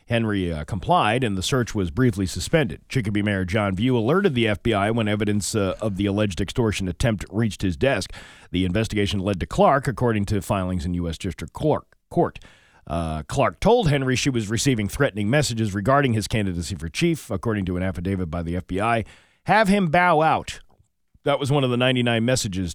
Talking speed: 185 wpm